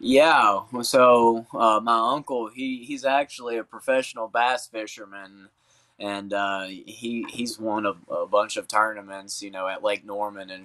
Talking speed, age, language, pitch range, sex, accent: 160 wpm, 20-39, English, 100-125 Hz, male, American